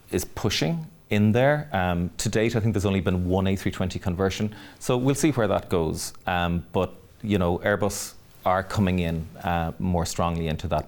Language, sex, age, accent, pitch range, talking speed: English, male, 30-49, Irish, 85-105 Hz, 190 wpm